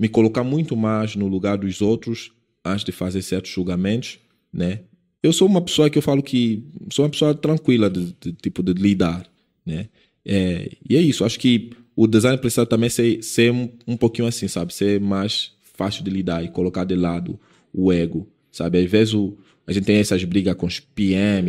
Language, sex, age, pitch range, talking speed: Portuguese, male, 20-39, 95-120 Hz, 200 wpm